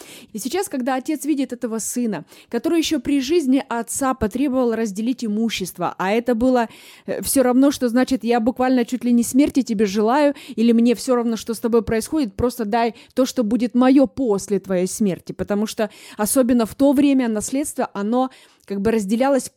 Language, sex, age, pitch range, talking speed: Russian, female, 20-39, 230-285 Hz, 180 wpm